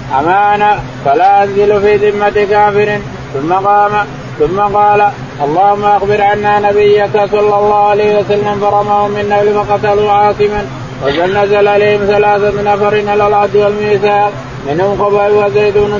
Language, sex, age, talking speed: Arabic, male, 20-39, 130 wpm